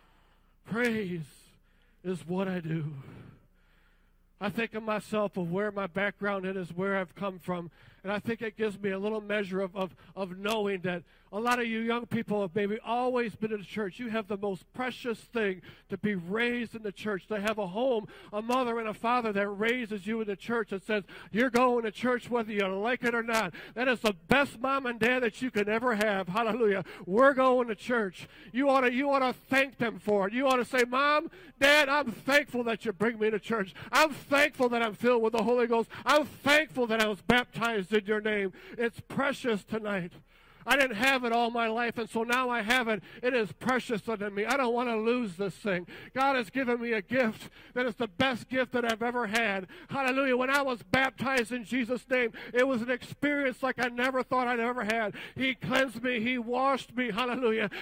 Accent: American